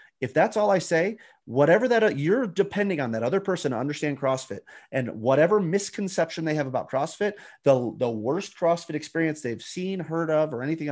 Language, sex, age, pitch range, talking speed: English, male, 30-49, 130-175 Hz, 190 wpm